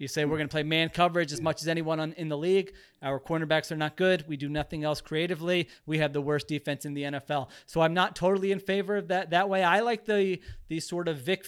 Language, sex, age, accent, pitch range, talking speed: English, male, 30-49, American, 155-190 Hz, 260 wpm